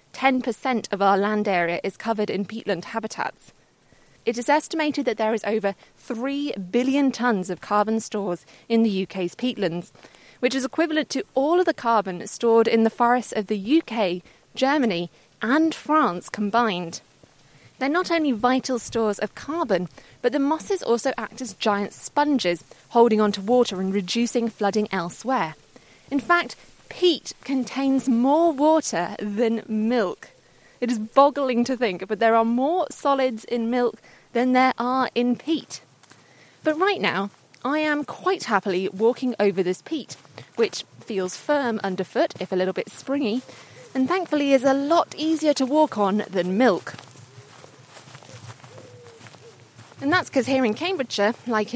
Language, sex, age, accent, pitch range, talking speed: English, female, 20-39, British, 195-270 Hz, 150 wpm